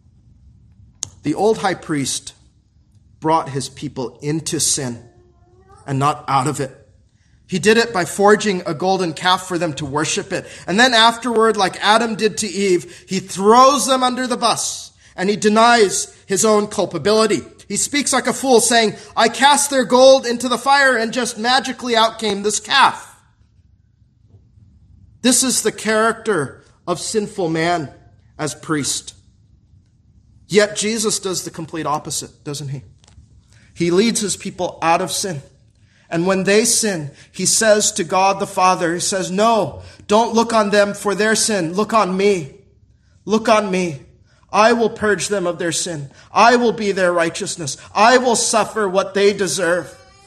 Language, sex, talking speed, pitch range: English, male, 160 wpm, 140-215 Hz